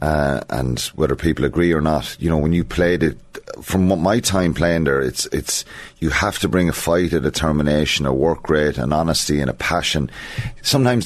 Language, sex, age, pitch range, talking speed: English, male, 30-49, 75-95 Hz, 200 wpm